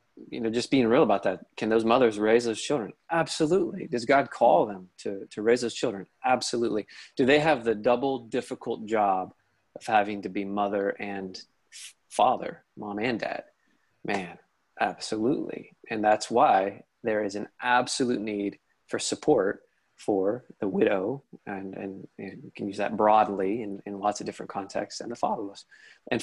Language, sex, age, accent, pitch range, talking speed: English, male, 20-39, American, 105-130 Hz, 165 wpm